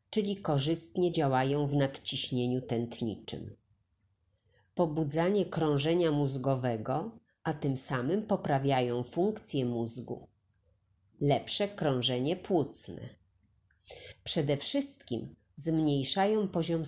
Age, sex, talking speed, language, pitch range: 30-49, female, 80 wpm, Polish, 125-175 Hz